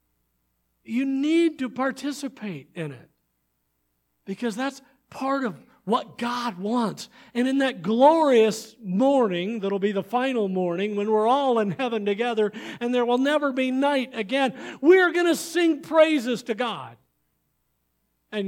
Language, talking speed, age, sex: English, 145 wpm, 50-69, male